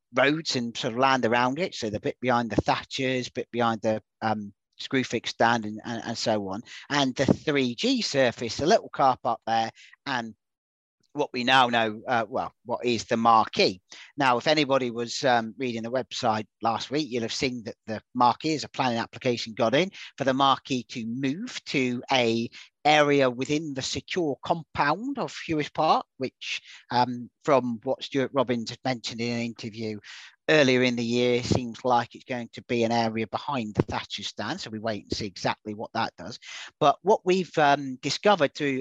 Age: 40-59